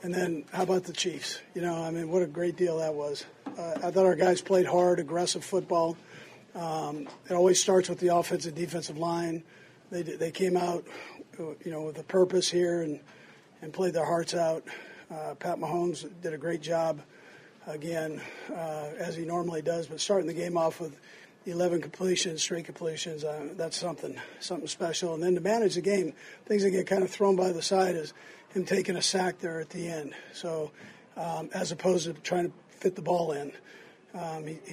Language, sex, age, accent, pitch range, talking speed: English, male, 50-69, American, 165-185 Hz, 200 wpm